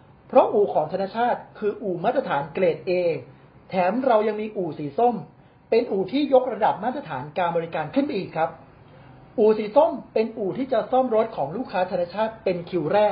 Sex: male